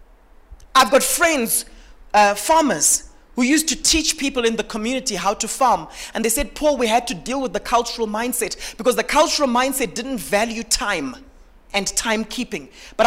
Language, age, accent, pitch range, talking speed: English, 30-49, South African, 220-270 Hz, 175 wpm